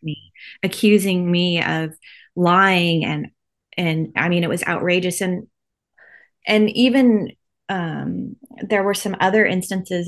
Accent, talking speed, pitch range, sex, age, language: American, 125 wpm, 165-190 Hz, female, 20-39, English